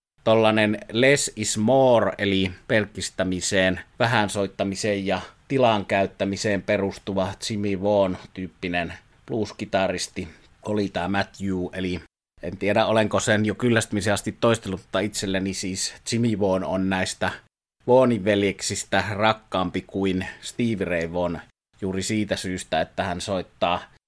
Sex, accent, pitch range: male, native, 95-110 Hz